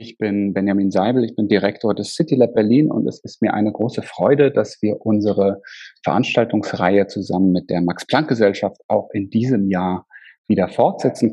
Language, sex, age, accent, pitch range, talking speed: German, male, 40-59, German, 100-110 Hz, 165 wpm